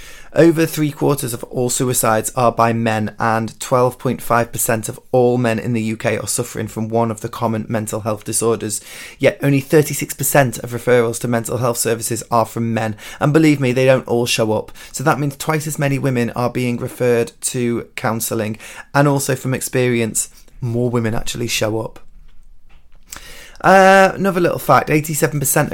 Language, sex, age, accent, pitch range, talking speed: English, male, 20-39, British, 115-140 Hz, 170 wpm